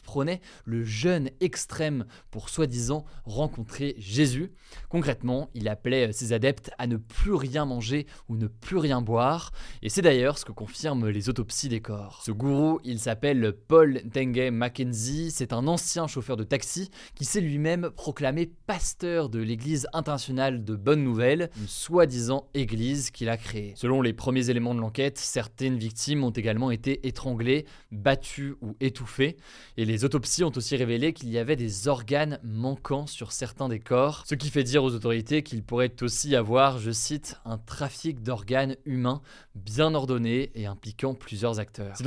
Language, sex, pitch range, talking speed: French, male, 115-140 Hz, 170 wpm